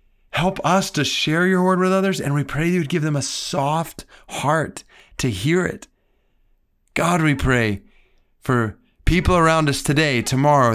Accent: American